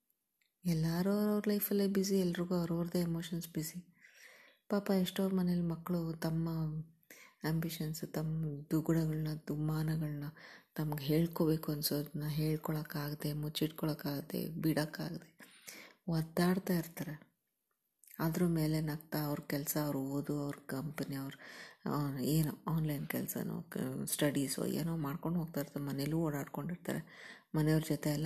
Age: 20-39